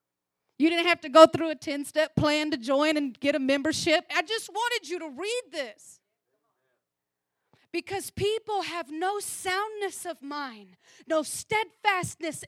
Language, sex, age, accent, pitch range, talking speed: English, female, 30-49, American, 250-360 Hz, 150 wpm